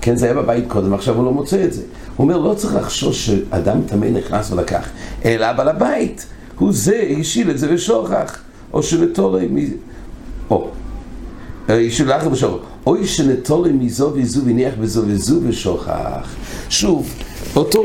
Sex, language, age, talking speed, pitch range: male, English, 60-79, 145 wpm, 115-160 Hz